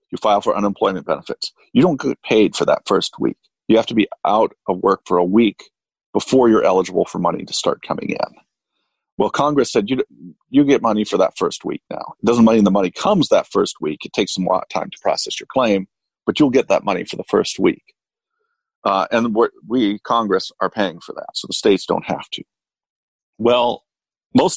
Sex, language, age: male, English, 40-59